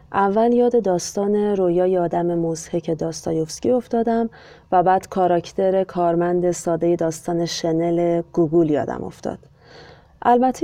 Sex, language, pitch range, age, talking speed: female, Persian, 170-215 Hz, 30-49, 105 wpm